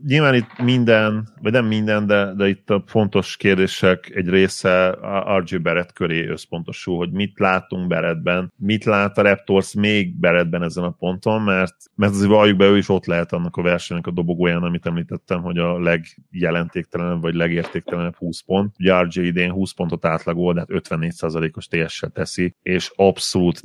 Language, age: Hungarian, 30-49